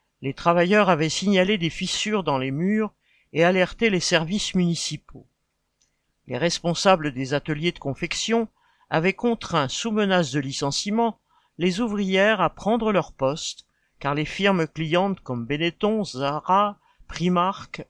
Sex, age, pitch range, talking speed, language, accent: male, 50-69, 150-195 Hz, 135 wpm, French, French